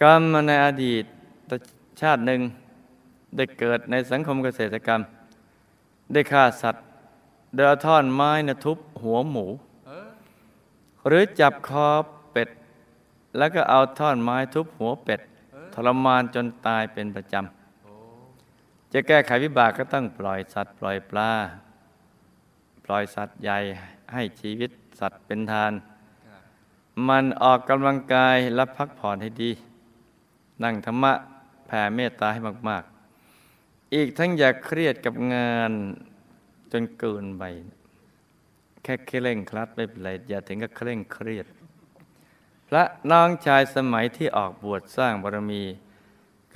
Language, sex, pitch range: Thai, male, 110-135 Hz